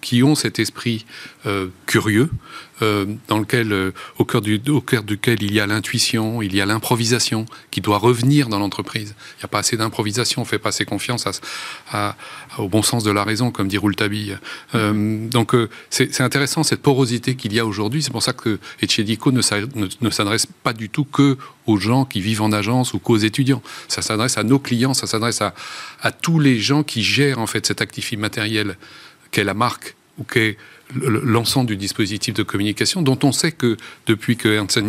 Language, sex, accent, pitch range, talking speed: French, male, French, 105-125 Hz, 210 wpm